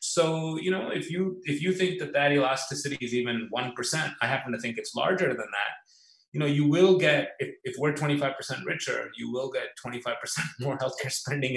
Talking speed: 200 wpm